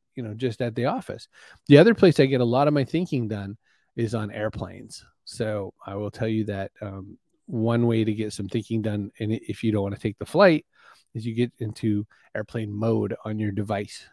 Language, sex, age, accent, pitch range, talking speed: English, male, 30-49, American, 105-135 Hz, 220 wpm